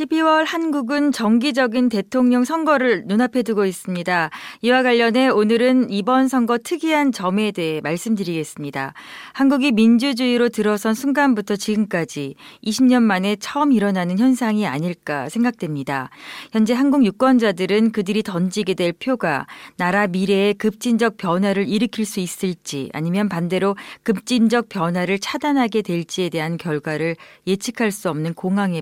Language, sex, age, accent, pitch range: Korean, female, 40-59, native, 180-235 Hz